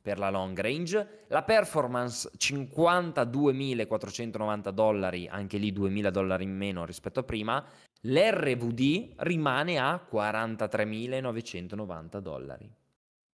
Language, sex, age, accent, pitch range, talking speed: Italian, male, 20-39, native, 95-115 Hz, 100 wpm